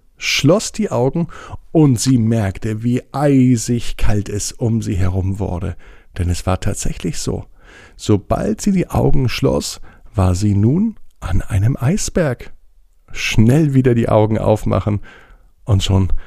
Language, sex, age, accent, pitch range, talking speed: German, male, 50-69, German, 100-125 Hz, 135 wpm